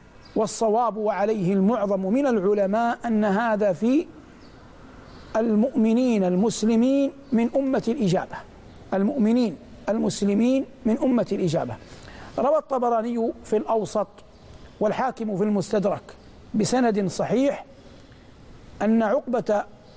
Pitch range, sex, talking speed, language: 205-245 Hz, male, 85 wpm, Arabic